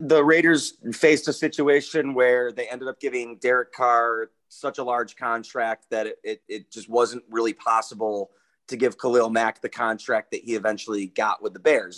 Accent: American